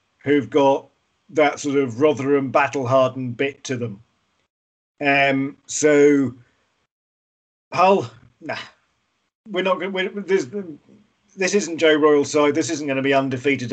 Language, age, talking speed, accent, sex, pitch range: English, 50-69, 130 wpm, British, male, 130-155 Hz